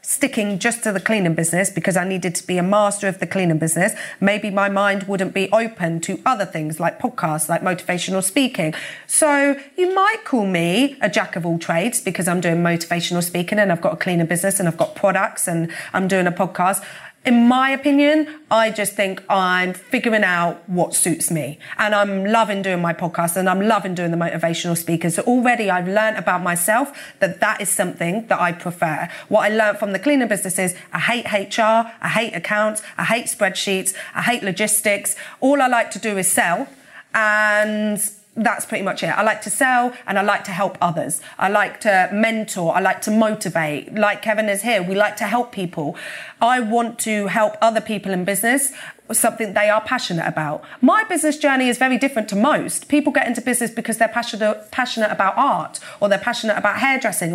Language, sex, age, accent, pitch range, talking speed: English, female, 30-49, British, 185-230 Hz, 200 wpm